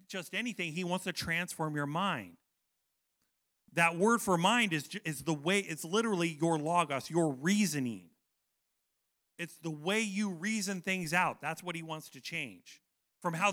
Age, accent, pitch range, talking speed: 40-59, American, 145-210 Hz, 165 wpm